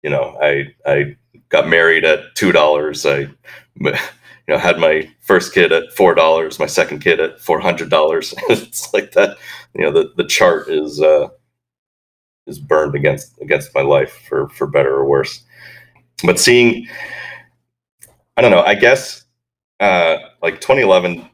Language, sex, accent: English, male, American